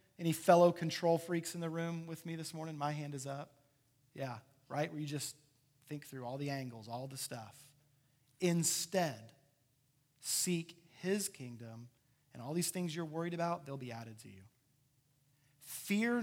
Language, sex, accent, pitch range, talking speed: English, male, American, 135-180 Hz, 165 wpm